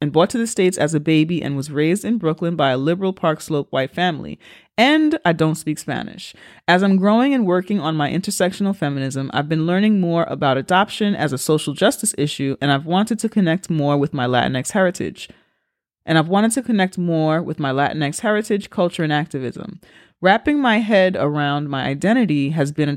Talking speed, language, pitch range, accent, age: 200 wpm, English, 150-200 Hz, American, 30-49